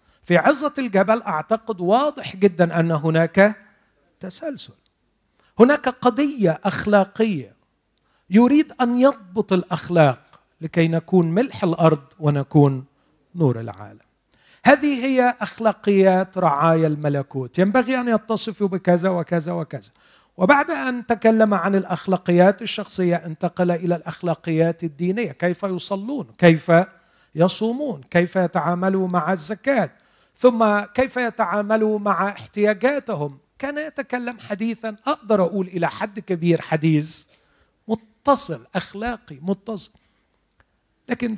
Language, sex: Arabic, male